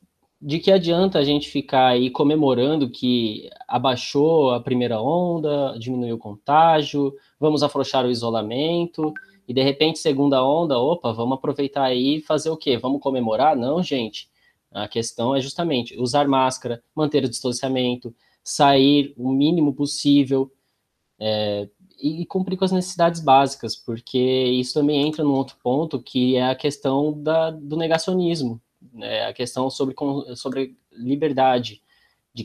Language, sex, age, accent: Portuguese, male, 20-39, Brazilian